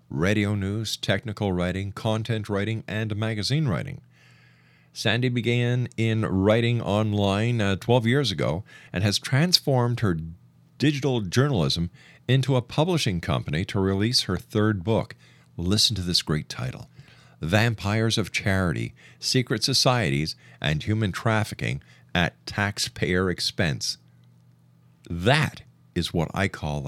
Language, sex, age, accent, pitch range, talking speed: English, male, 50-69, American, 90-120 Hz, 120 wpm